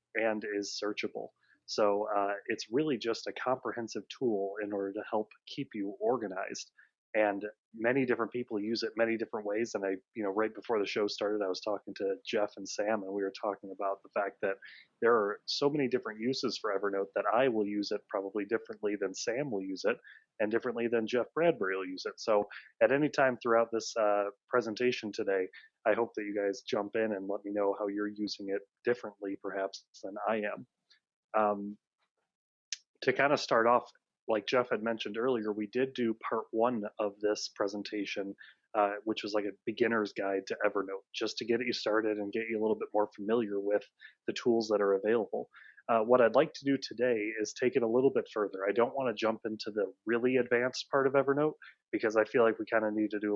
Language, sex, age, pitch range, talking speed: English, male, 30-49, 100-115 Hz, 215 wpm